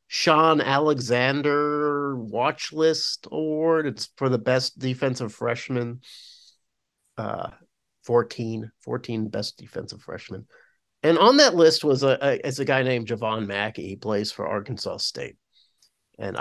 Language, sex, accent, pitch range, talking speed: English, male, American, 115-155 Hz, 130 wpm